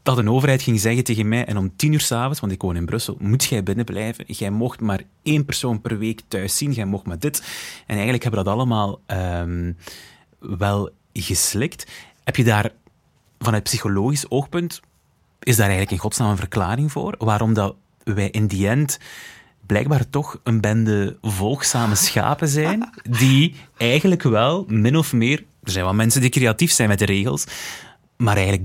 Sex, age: male, 30-49